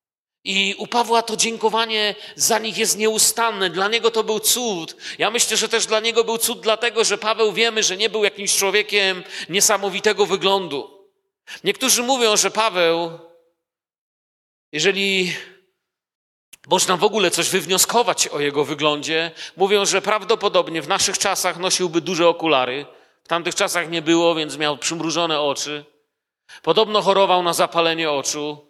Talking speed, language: 145 wpm, Polish